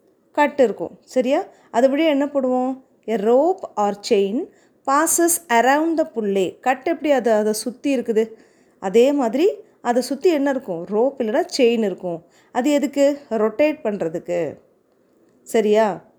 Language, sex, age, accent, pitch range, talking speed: Tamil, female, 30-49, native, 220-295 Hz, 130 wpm